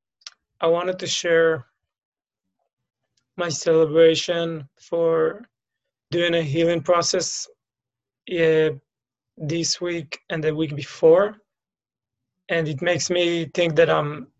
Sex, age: male, 20-39